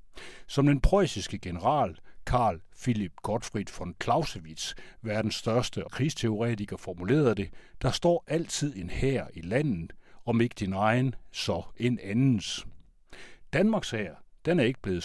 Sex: male